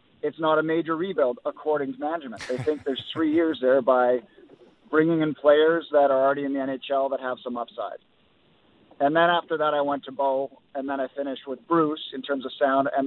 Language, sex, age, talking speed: English, male, 50-69, 215 wpm